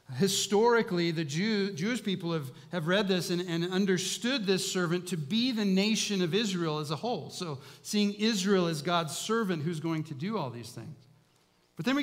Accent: American